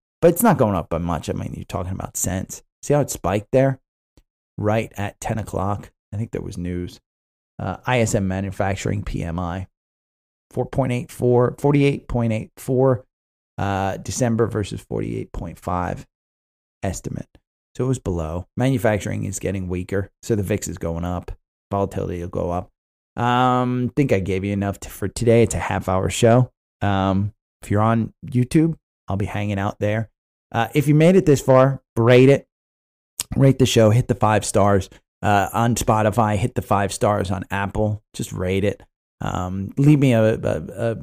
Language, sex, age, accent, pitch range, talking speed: English, male, 30-49, American, 95-120 Hz, 170 wpm